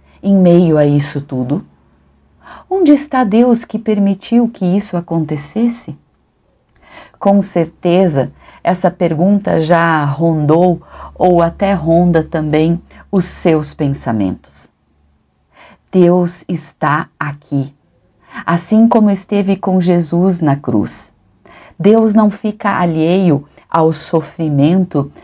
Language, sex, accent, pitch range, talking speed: Portuguese, female, Brazilian, 150-210 Hz, 100 wpm